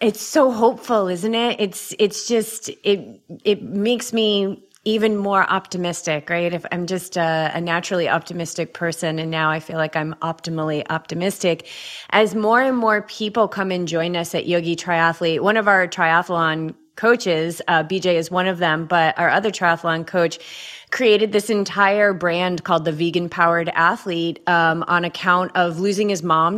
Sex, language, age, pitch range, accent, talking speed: female, English, 30-49, 170-215 Hz, American, 170 wpm